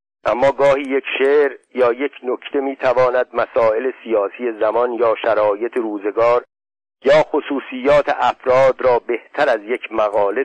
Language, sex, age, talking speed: Persian, male, 50-69, 130 wpm